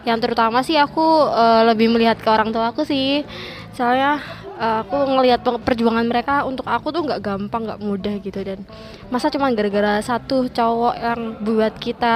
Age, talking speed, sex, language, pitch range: 20-39, 175 wpm, female, Indonesian, 220-260 Hz